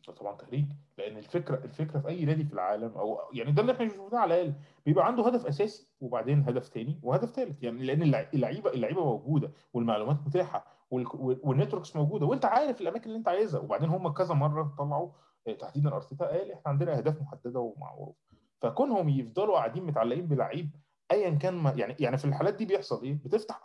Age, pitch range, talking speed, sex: 20-39, 140-185 Hz, 185 wpm, male